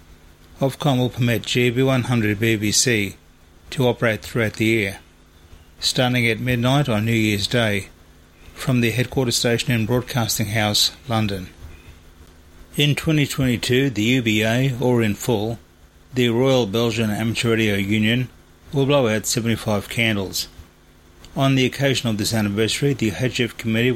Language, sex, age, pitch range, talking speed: English, male, 30-49, 85-120 Hz, 130 wpm